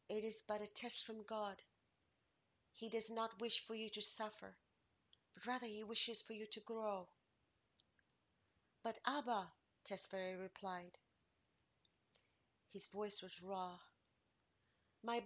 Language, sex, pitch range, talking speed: English, female, 190-220 Hz, 125 wpm